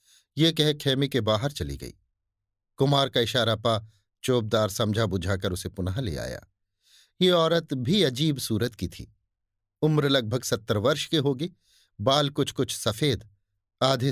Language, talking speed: Hindi, 155 wpm